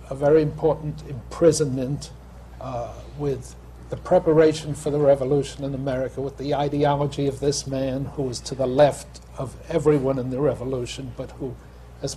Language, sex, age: English, male, 60-79